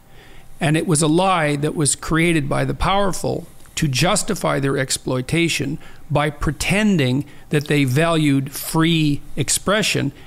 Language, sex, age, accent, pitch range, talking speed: English, male, 50-69, American, 135-160 Hz, 130 wpm